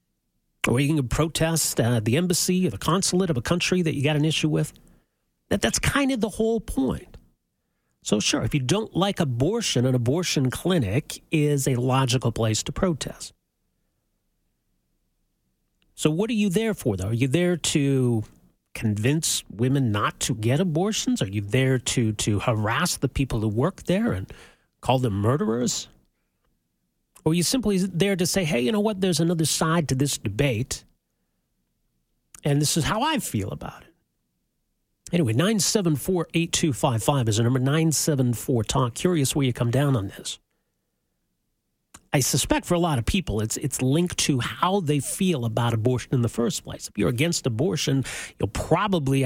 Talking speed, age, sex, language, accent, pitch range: 170 wpm, 40-59, male, English, American, 120-170 Hz